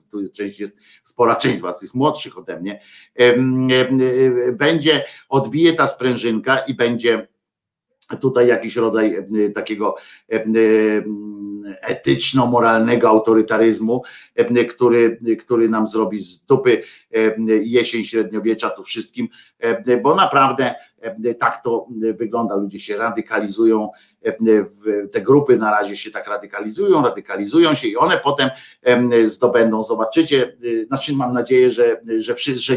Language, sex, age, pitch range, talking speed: Polish, male, 50-69, 105-130 Hz, 110 wpm